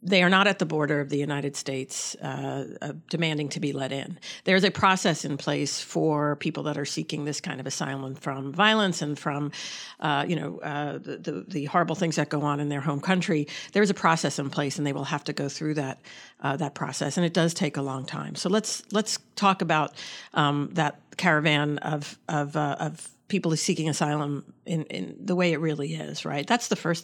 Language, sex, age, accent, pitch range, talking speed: English, female, 50-69, American, 150-190 Hz, 225 wpm